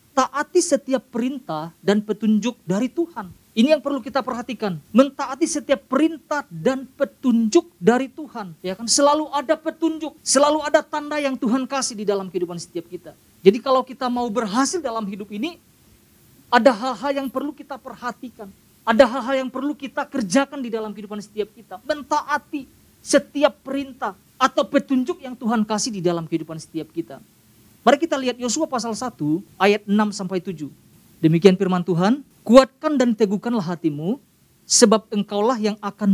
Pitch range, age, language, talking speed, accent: 195-270 Hz, 40-59, Indonesian, 155 wpm, native